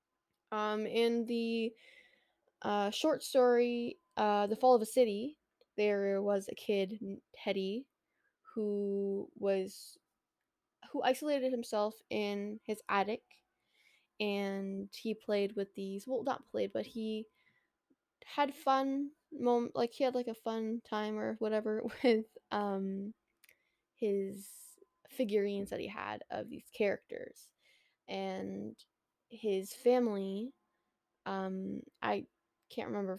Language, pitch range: English, 195-235 Hz